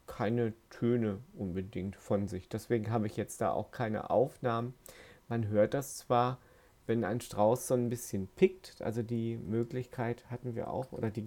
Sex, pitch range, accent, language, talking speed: male, 110-130 Hz, German, German, 170 wpm